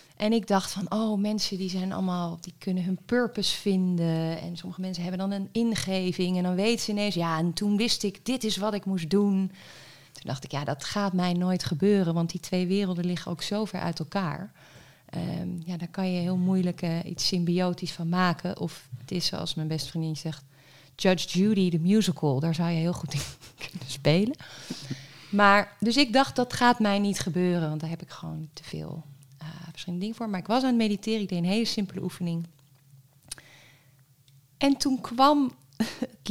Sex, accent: female, Dutch